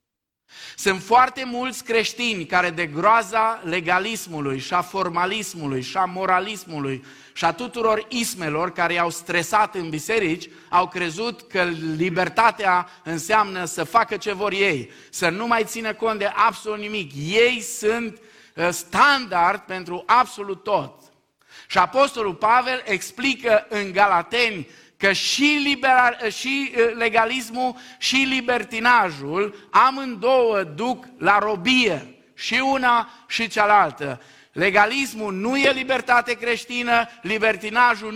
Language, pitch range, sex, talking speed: Romanian, 180-240 Hz, male, 115 wpm